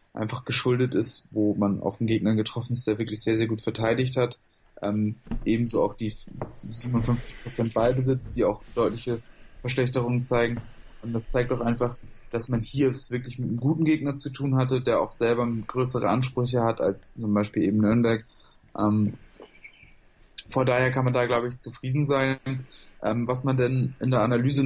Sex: male